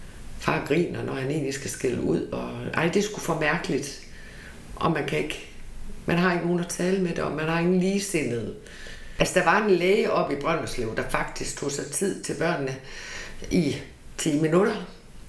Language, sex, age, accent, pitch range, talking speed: Danish, female, 60-79, native, 150-185 Hz, 190 wpm